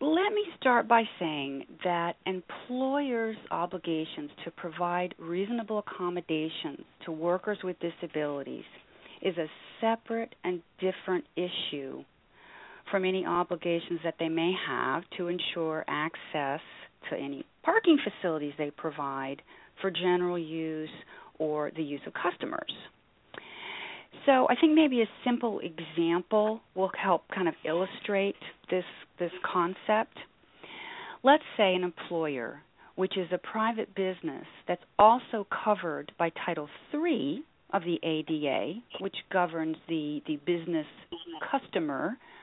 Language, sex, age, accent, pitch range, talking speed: English, female, 40-59, American, 165-220 Hz, 120 wpm